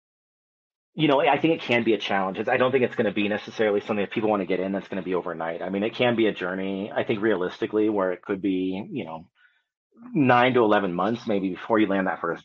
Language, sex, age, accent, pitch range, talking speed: English, male, 30-49, American, 100-120 Hz, 265 wpm